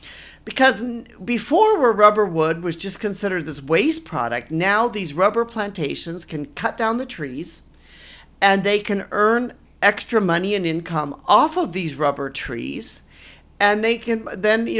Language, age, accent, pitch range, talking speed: English, 50-69, American, 170-230 Hz, 155 wpm